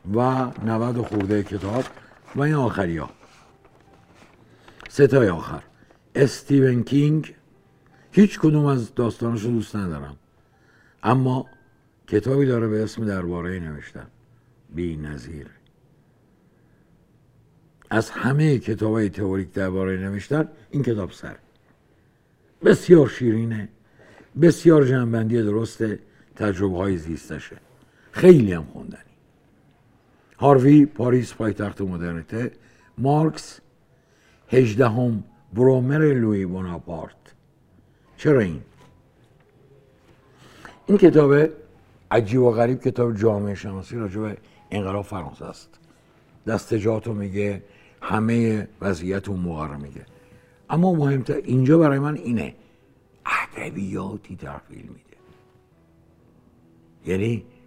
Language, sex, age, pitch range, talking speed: Persian, male, 60-79, 95-130 Hz, 95 wpm